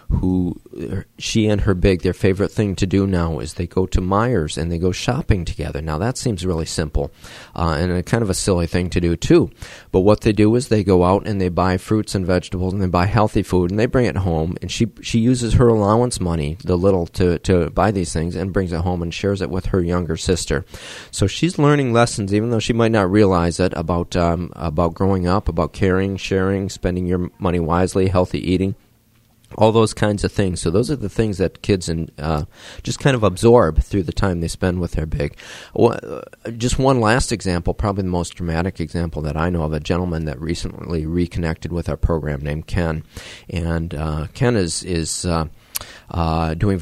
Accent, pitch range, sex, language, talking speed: American, 85-100 Hz, male, English, 215 wpm